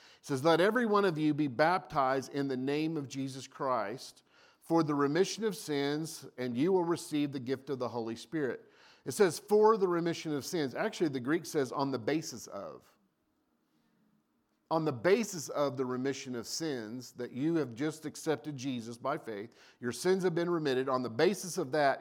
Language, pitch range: English, 135-165 Hz